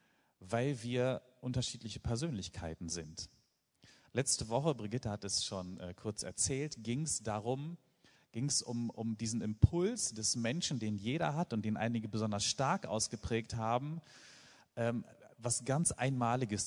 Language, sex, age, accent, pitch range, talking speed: German, male, 40-59, German, 100-130 Hz, 140 wpm